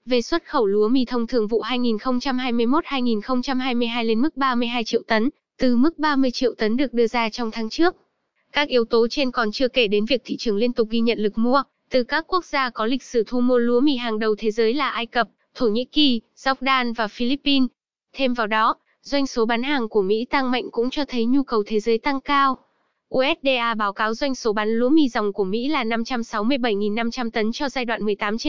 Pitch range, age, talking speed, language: 225-270 Hz, 10-29, 220 wpm, Vietnamese